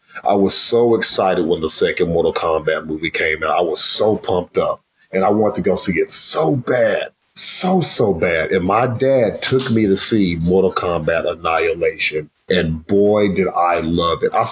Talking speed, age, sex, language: 190 wpm, 40-59, male, English